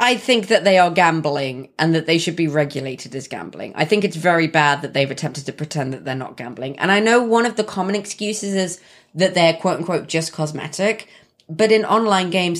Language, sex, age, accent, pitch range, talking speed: English, female, 20-39, British, 150-195 Hz, 220 wpm